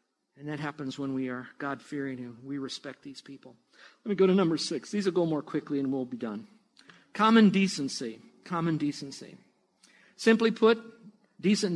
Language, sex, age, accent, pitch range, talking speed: English, male, 50-69, American, 145-180 Hz, 175 wpm